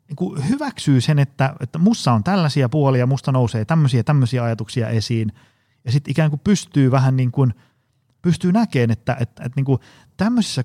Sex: male